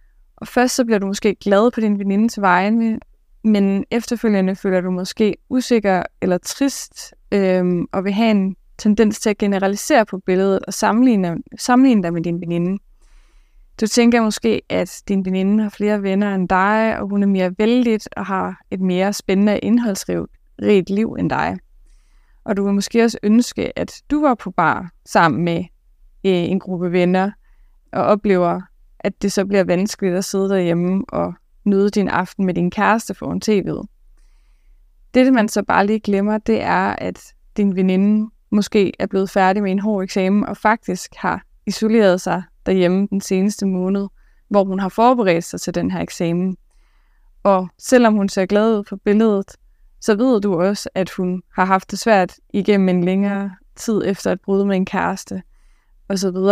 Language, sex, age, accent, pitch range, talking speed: Danish, female, 20-39, native, 185-215 Hz, 175 wpm